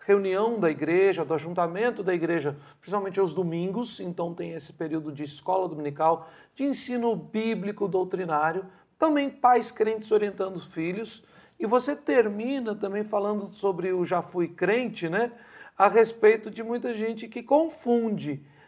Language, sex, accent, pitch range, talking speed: Portuguese, male, Brazilian, 180-230 Hz, 145 wpm